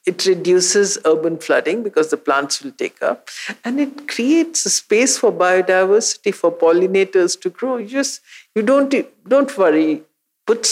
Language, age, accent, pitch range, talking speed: English, 60-79, Indian, 175-265 Hz, 155 wpm